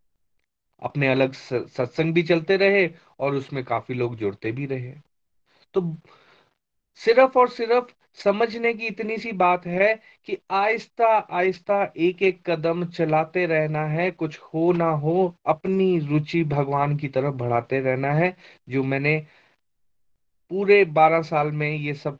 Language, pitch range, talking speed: Hindi, 145-190 Hz, 140 wpm